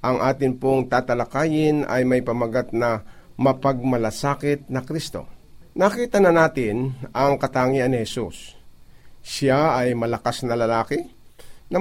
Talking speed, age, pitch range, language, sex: 120 wpm, 50-69, 125-155 Hz, Filipino, male